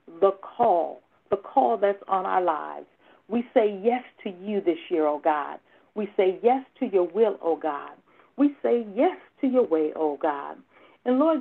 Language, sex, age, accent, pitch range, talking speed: English, female, 50-69, American, 190-260 Hz, 185 wpm